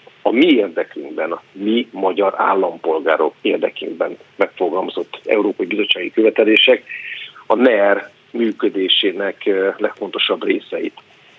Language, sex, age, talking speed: Hungarian, male, 50-69, 90 wpm